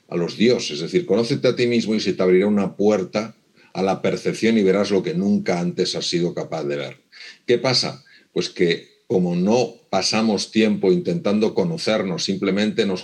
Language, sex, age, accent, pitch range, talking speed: Spanish, male, 50-69, Spanish, 95-120 Hz, 190 wpm